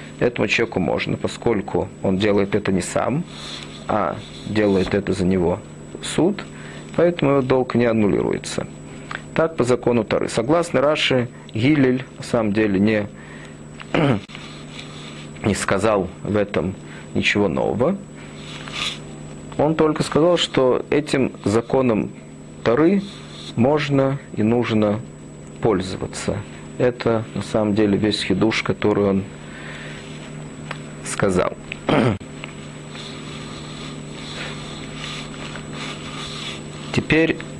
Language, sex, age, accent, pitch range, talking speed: Russian, male, 40-59, native, 80-125 Hz, 95 wpm